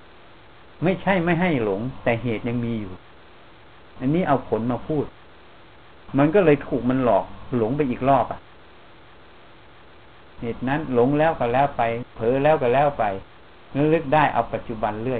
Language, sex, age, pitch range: Thai, male, 60-79, 110-145 Hz